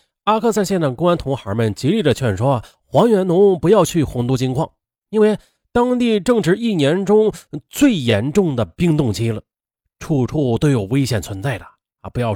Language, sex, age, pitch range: Chinese, male, 30-49, 115-195 Hz